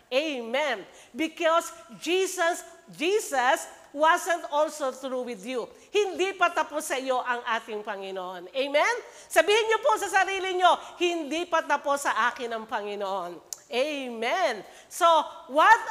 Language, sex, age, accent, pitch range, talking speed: English, female, 40-59, Filipino, 255-355 Hz, 130 wpm